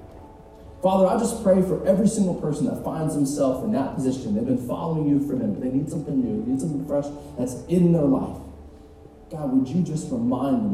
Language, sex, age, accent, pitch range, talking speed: English, male, 30-49, American, 120-175 Hz, 220 wpm